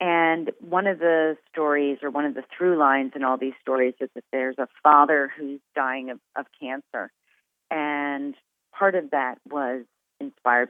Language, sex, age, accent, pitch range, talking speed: English, female, 40-59, American, 130-155 Hz, 175 wpm